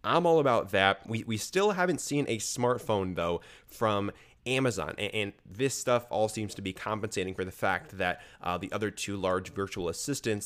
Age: 20-39